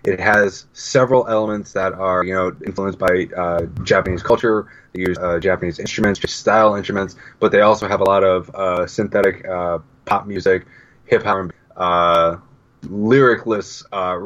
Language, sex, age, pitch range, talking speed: English, male, 20-39, 90-110 Hz, 155 wpm